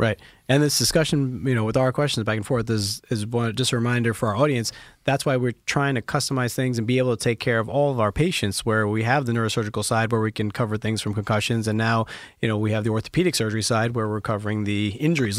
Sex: male